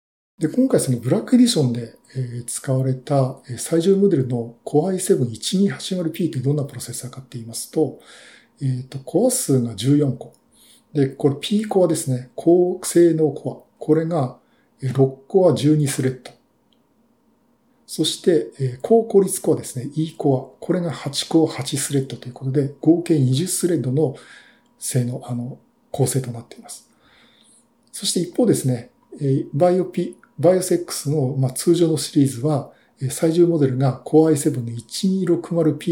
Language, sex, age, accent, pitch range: Japanese, male, 50-69, native, 130-175 Hz